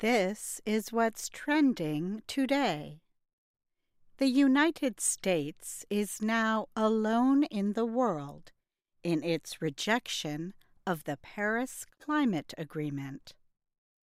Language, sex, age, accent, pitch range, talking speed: English, female, 50-69, American, 165-245 Hz, 95 wpm